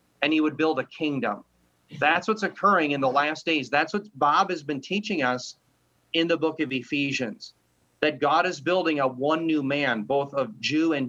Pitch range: 135-180 Hz